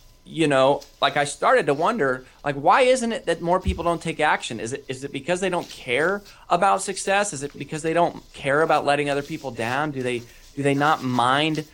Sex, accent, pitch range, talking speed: male, American, 125-155 Hz, 225 wpm